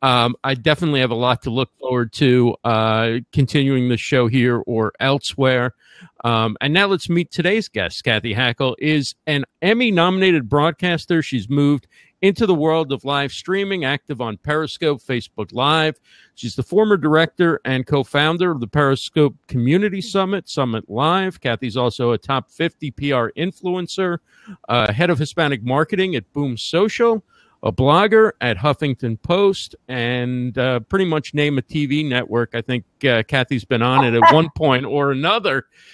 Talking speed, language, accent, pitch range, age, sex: 160 wpm, English, American, 130-175 Hz, 50-69, male